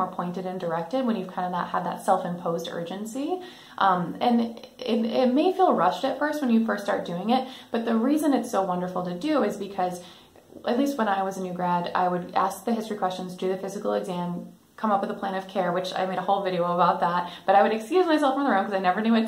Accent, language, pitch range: American, English, 180-230 Hz